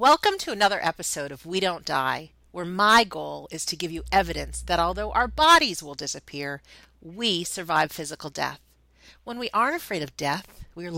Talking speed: 180 wpm